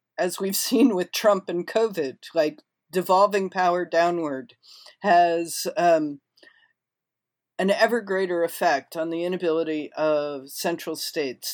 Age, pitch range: 50-69, 155-200 Hz